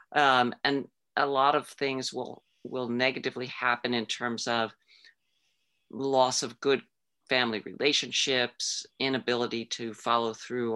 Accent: American